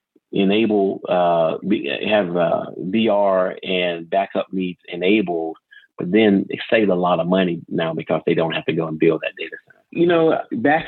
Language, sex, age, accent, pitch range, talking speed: English, male, 40-59, American, 90-100 Hz, 175 wpm